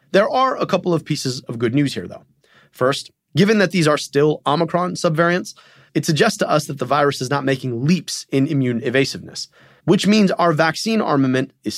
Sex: male